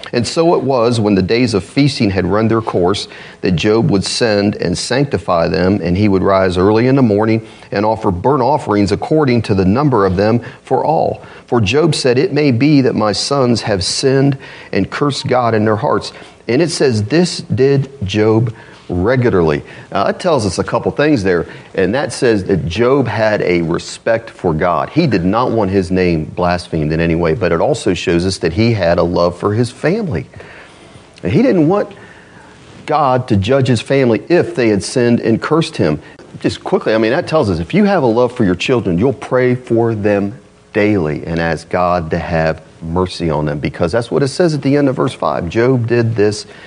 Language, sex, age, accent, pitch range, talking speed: English, male, 40-59, American, 95-130 Hz, 205 wpm